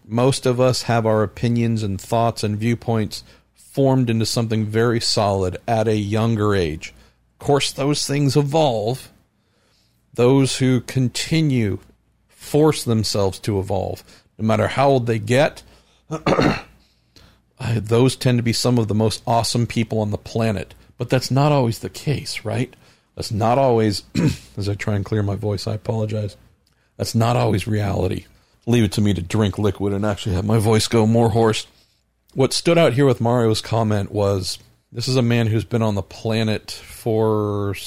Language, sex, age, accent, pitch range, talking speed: English, male, 50-69, American, 105-120 Hz, 170 wpm